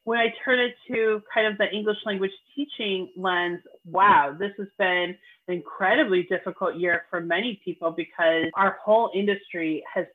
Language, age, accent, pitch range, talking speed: English, 30-49, American, 190-250 Hz, 165 wpm